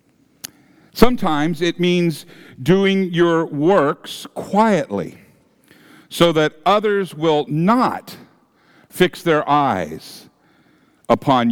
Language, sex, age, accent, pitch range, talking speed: English, male, 50-69, American, 140-180 Hz, 85 wpm